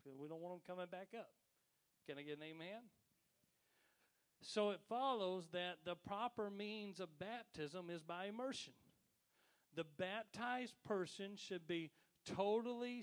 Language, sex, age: English, male, 40-59